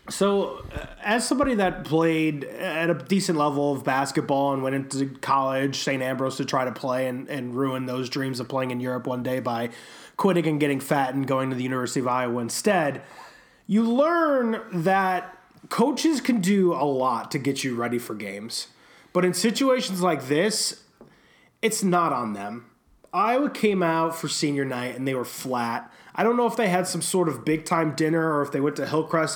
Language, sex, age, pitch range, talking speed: English, male, 30-49, 140-190 Hz, 195 wpm